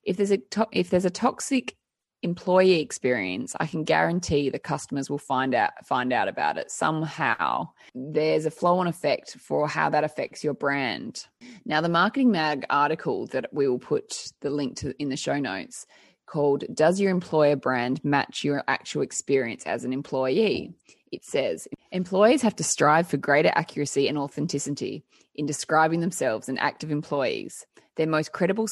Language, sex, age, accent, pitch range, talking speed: English, female, 20-39, Australian, 145-185 Hz, 170 wpm